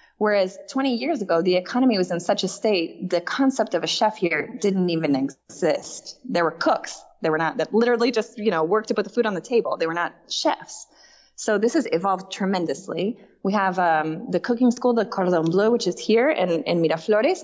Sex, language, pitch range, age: female, English, 170-225 Hz, 20-39